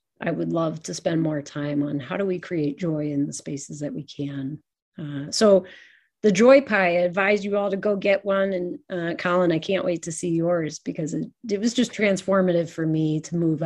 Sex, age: female, 30-49